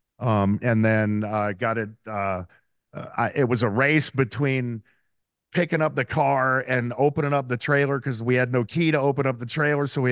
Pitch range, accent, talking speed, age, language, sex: 115-145 Hz, American, 195 wpm, 50-69, English, male